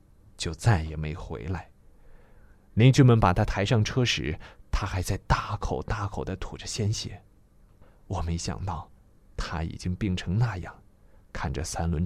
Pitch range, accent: 90-105 Hz, native